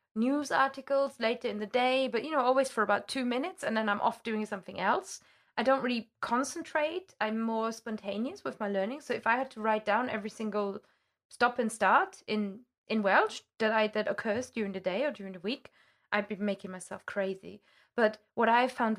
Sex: female